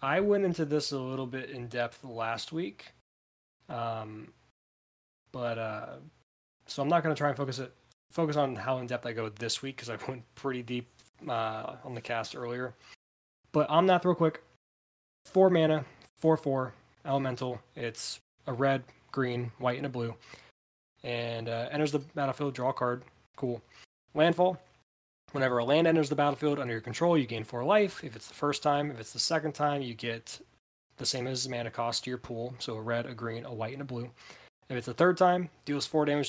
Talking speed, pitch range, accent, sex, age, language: 200 wpm, 120-150 Hz, American, male, 20-39, English